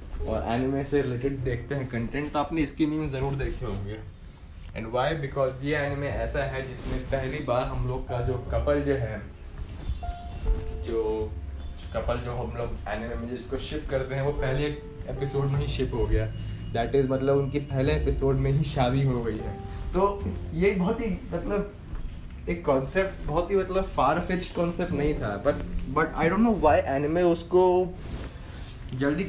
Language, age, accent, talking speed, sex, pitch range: Hindi, 20-39, native, 170 wpm, male, 110-145 Hz